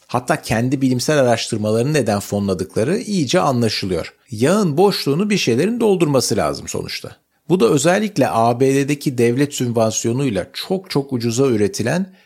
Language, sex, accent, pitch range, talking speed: Turkish, male, native, 110-165 Hz, 120 wpm